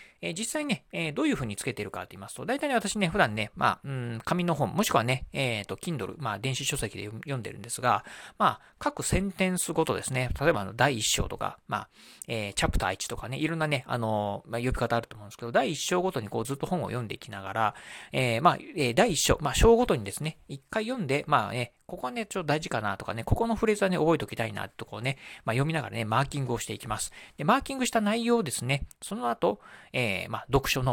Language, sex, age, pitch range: Japanese, male, 40-59, 115-170 Hz